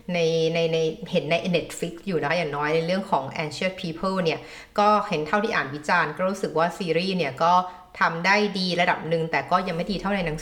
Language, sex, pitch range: Thai, female, 155-200 Hz